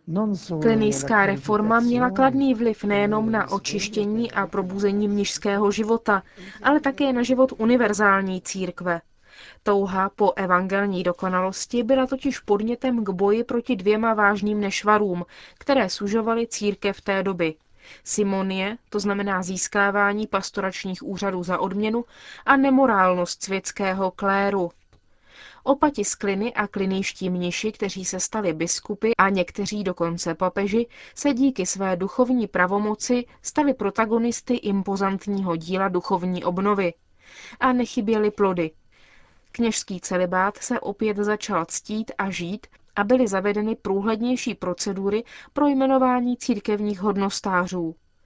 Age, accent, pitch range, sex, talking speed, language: 20-39, native, 190-230 Hz, female, 115 wpm, Czech